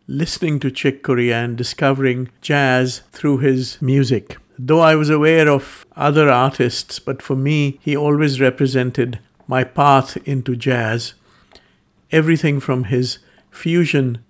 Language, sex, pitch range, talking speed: English, male, 125-150 Hz, 130 wpm